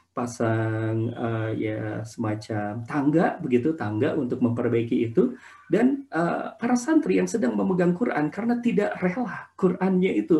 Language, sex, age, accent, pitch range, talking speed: Indonesian, male, 40-59, native, 115-175 Hz, 135 wpm